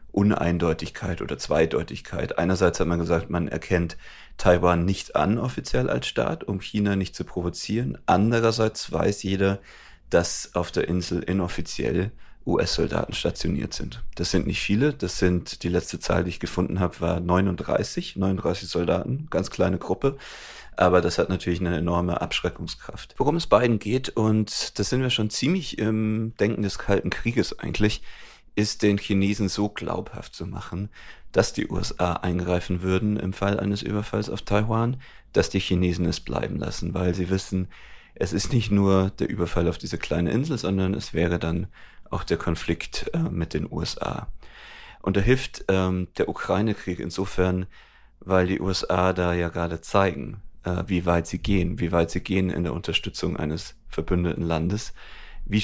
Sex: male